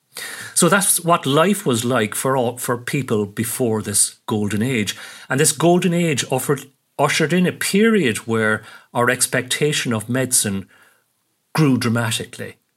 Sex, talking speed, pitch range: male, 140 wpm, 110-140 Hz